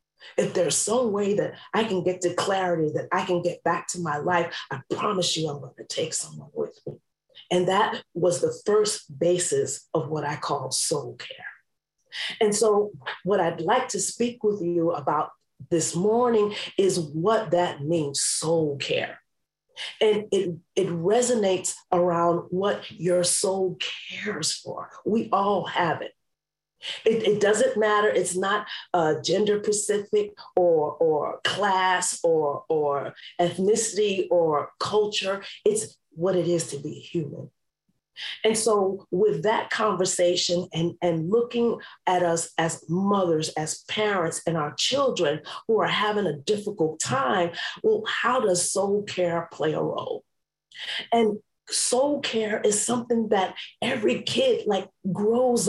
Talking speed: 150 wpm